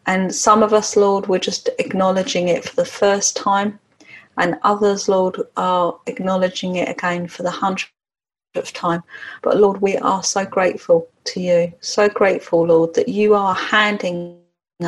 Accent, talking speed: British, 155 wpm